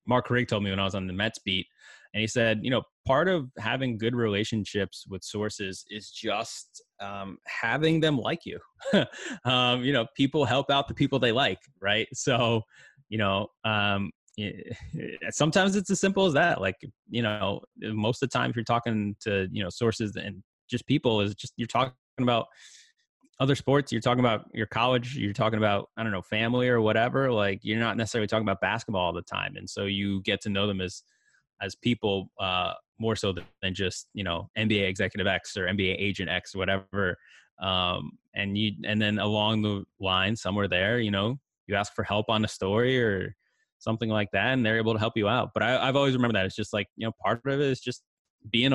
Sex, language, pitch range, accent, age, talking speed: male, English, 100-125 Hz, American, 20-39, 210 wpm